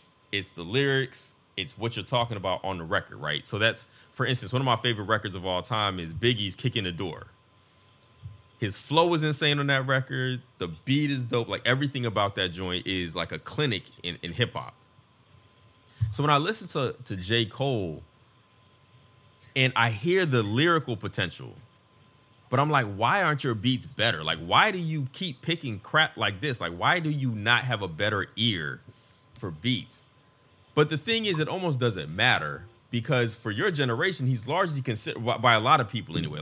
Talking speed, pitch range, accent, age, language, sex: 190 wpm, 100-130 Hz, American, 30-49, English, male